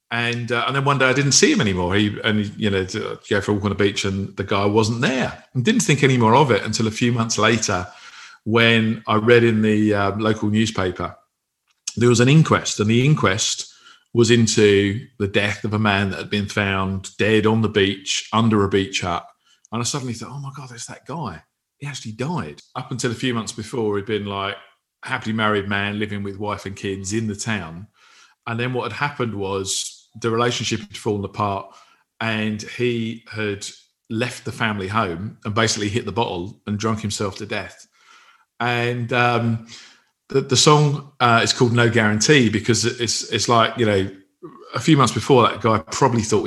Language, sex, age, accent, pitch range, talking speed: English, male, 40-59, British, 100-120 Hz, 205 wpm